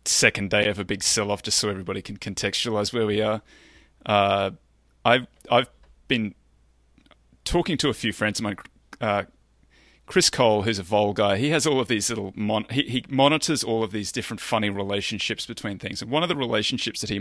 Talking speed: 195 wpm